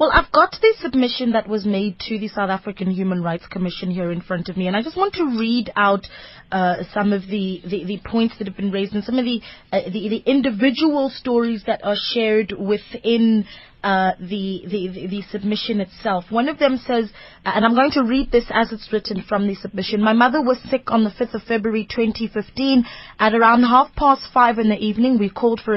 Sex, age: female, 20-39